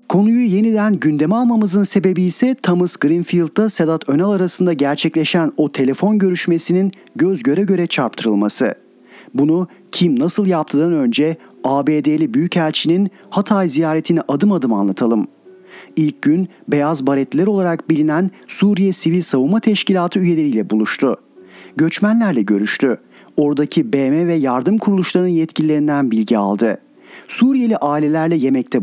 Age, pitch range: 40-59, 145-190 Hz